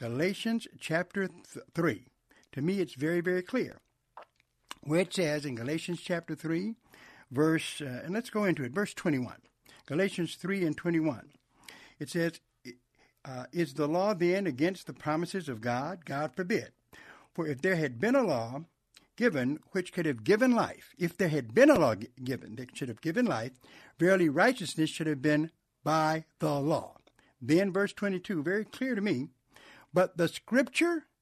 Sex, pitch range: male, 150-195 Hz